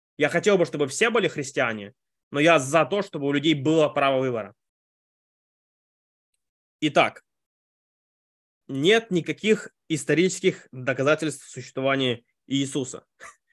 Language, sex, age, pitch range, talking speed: Russian, male, 20-39, 125-165 Hz, 105 wpm